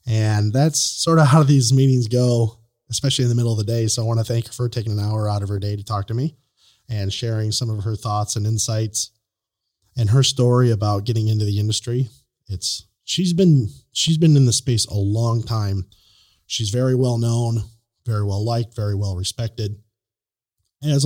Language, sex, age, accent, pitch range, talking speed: English, male, 30-49, American, 105-135 Hz, 200 wpm